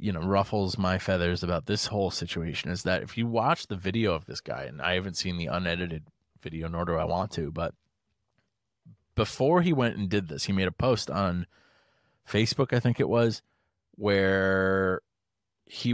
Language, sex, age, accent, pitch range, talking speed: English, male, 30-49, American, 95-110 Hz, 190 wpm